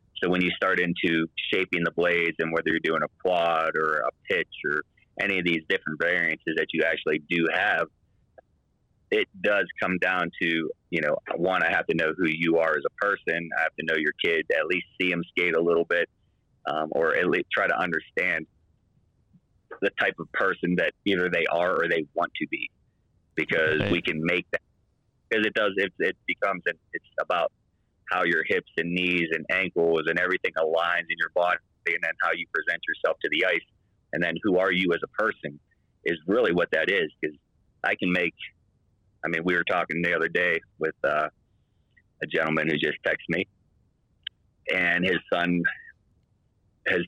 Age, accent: 30-49, American